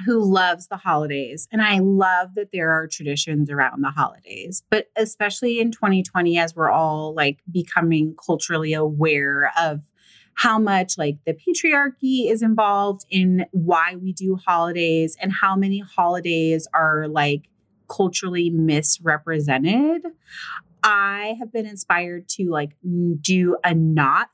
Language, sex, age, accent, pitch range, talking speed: English, female, 30-49, American, 160-205 Hz, 135 wpm